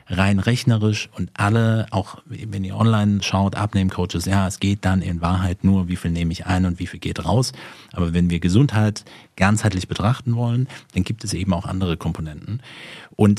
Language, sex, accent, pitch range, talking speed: German, male, German, 95-120 Hz, 190 wpm